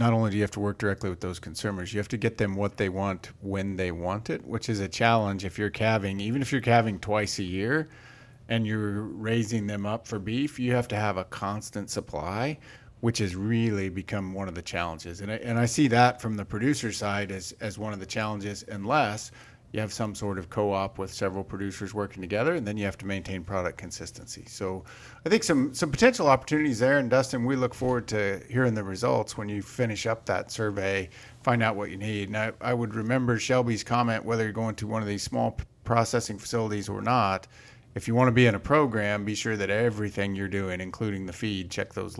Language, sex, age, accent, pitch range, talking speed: English, male, 40-59, American, 100-120 Hz, 230 wpm